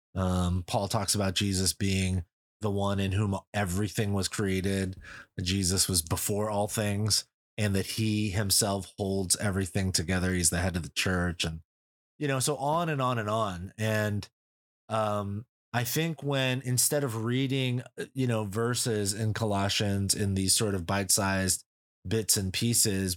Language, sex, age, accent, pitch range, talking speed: English, male, 30-49, American, 95-115 Hz, 160 wpm